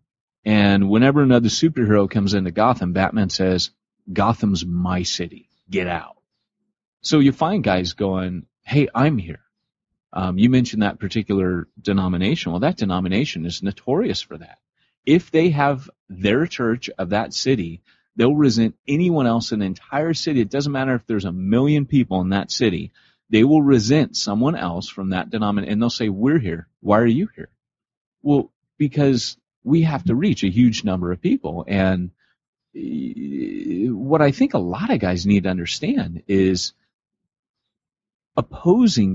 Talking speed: 160 wpm